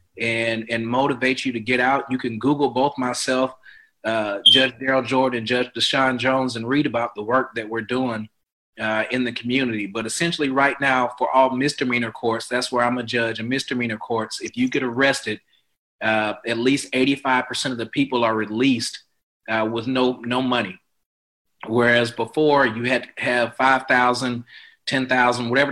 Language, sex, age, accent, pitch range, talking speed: English, male, 30-49, American, 115-135 Hz, 175 wpm